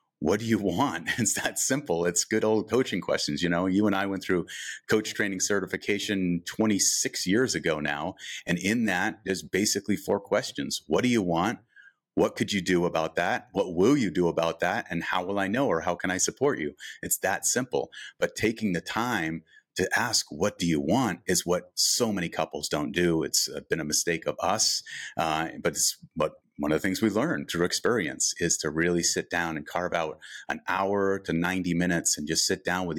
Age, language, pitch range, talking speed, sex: 30-49, English, 85-100 Hz, 210 wpm, male